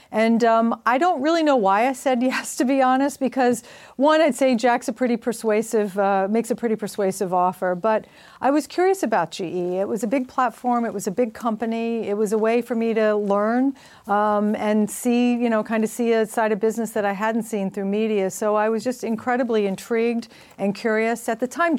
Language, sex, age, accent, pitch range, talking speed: English, female, 40-59, American, 205-235 Hz, 220 wpm